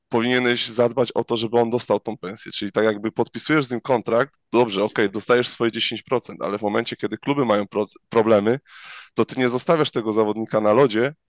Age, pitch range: 20-39, 115-135 Hz